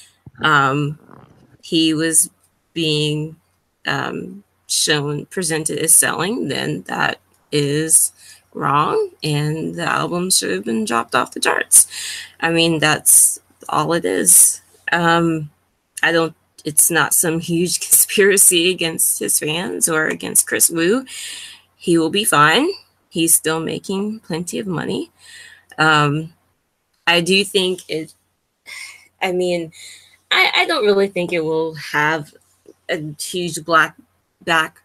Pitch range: 150-175 Hz